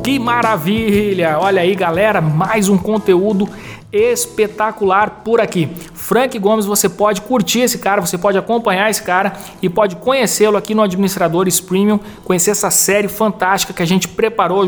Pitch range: 175-210 Hz